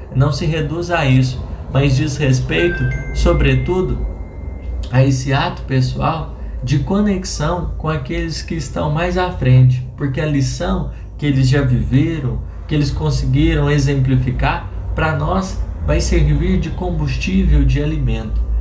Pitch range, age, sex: 105-155 Hz, 20-39, male